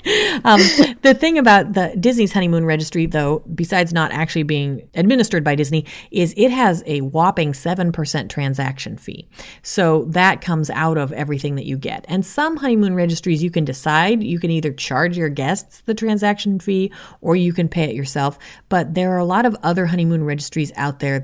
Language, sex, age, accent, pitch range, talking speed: English, female, 30-49, American, 150-190 Hz, 190 wpm